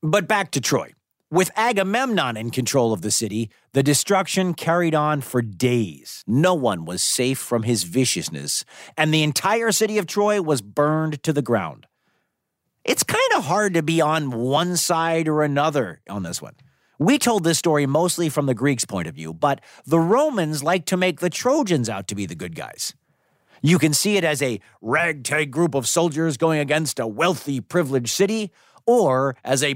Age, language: 40-59, English